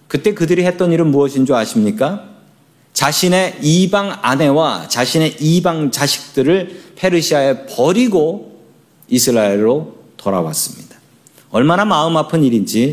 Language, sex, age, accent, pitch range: Korean, male, 40-59, native, 140-195 Hz